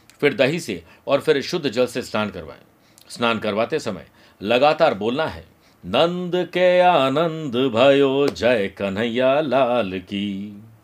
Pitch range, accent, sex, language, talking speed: 110-155 Hz, native, male, Hindi, 125 wpm